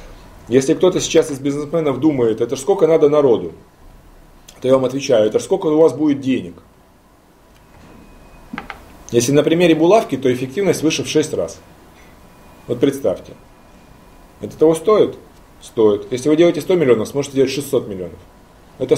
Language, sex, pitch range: Russian, male, 120-160 Hz